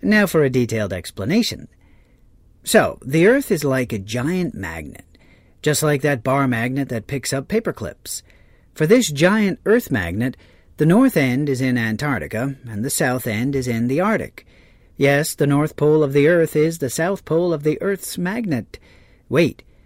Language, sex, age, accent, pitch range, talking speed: English, male, 40-59, American, 125-170 Hz, 170 wpm